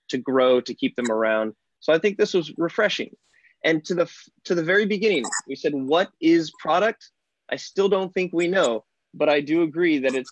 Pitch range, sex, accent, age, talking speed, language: 130-170 Hz, male, American, 20-39, 215 wpm, English